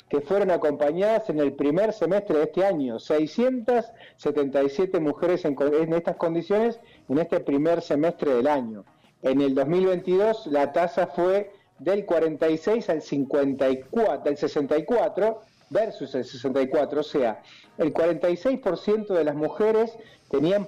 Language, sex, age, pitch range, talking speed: Spanish, male, 40-59, 145-200 Hz, 125 wpm